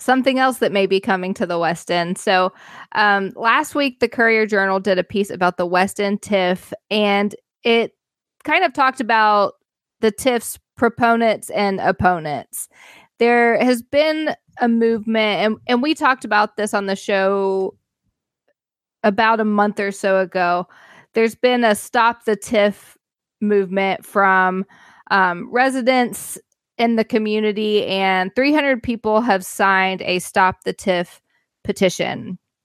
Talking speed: 145 wpm